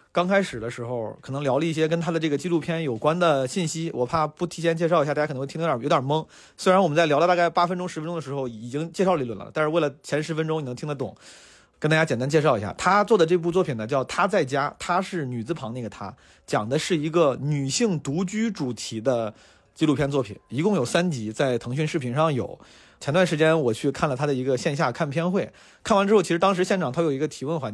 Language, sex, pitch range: Chinese, male, 130-170 Hz